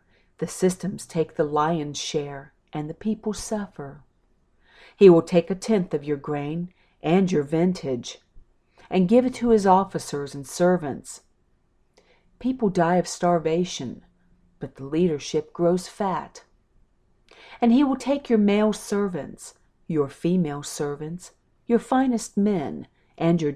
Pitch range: 145-185 Hz